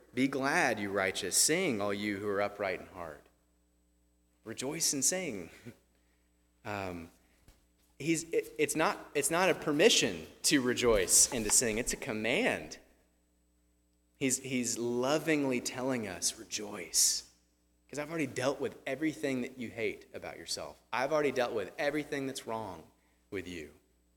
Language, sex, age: English, male, 30-49